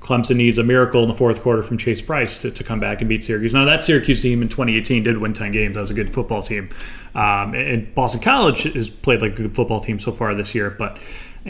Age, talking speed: 30-49, 260 wpm